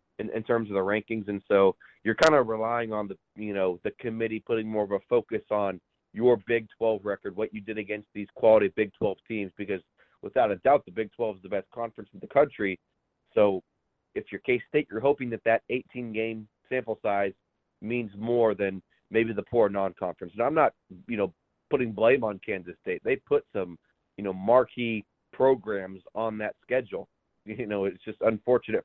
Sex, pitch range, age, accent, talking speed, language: male, 100-120 Hz, 30-49, American, 195 wpm, English